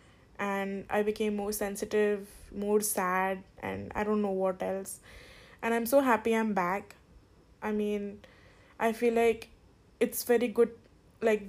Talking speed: 145 wpm